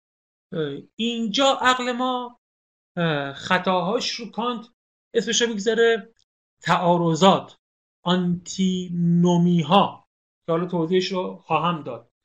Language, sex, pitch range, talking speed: Persian, male, 165-220 Hz, 90 wpm